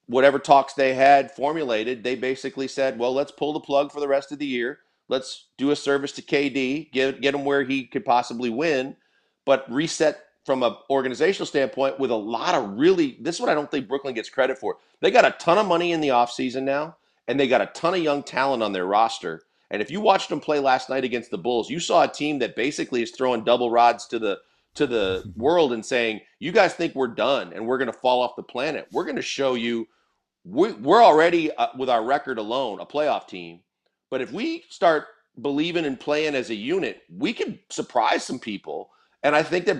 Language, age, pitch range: English, 40-59, 130-160 Hz